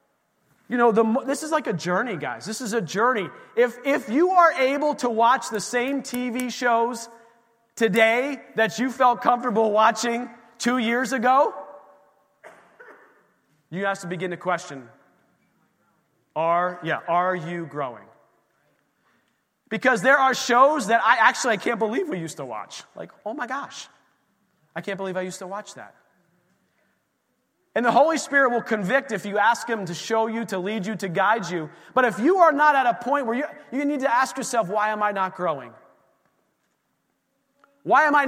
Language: English